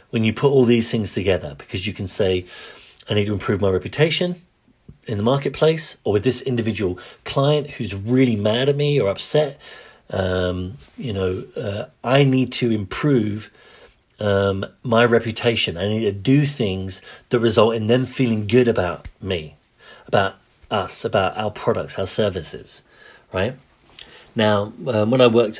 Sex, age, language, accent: male, 40-59, English, British